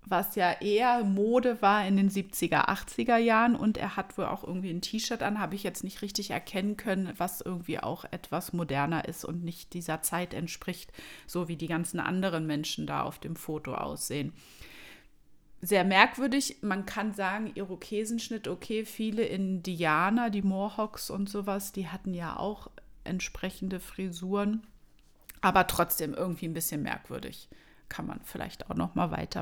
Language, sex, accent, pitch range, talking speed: German, female, German, 180-220 Hz, 165 wpm